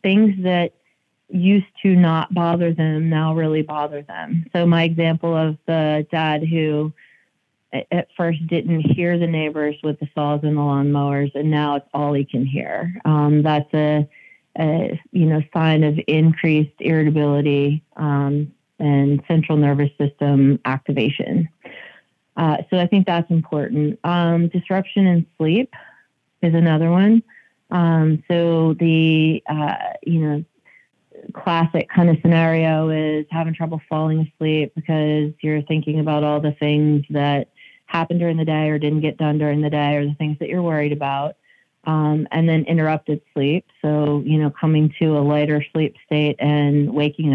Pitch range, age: 150-165 Hz, 30-49